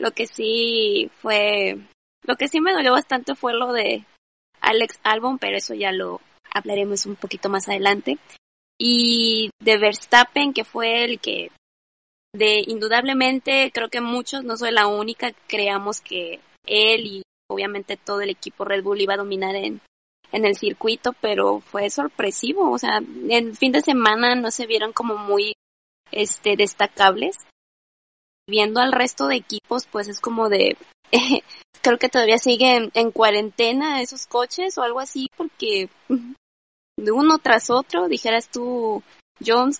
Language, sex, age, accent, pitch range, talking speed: Spanish, female, 20-39, Mexican, 205-255 Hz, 155 wpm